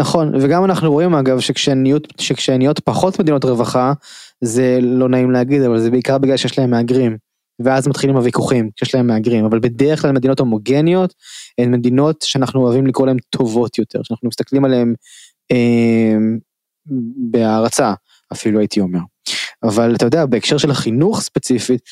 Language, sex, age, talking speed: Hebrew, male, 20-39, 150 wpm